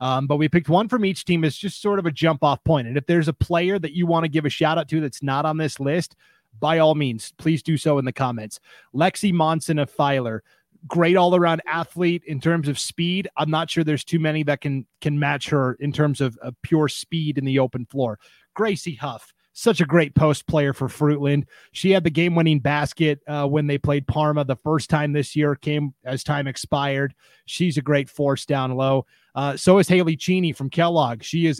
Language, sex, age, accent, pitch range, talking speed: English, male, 30-49, American, 135-165 Hz, 230 wpm